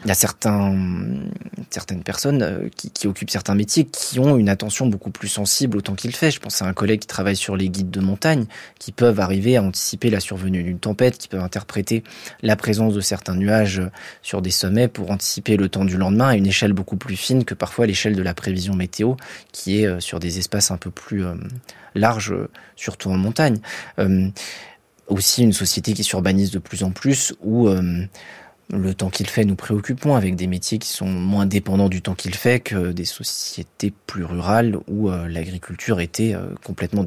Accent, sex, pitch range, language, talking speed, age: French, male, 95-110 Hz, French, 200 wpm, 20-39